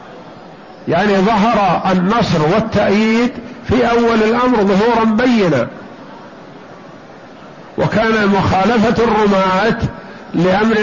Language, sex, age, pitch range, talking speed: Arabic, male, 50-69, 195-230 Hz, 70 wpm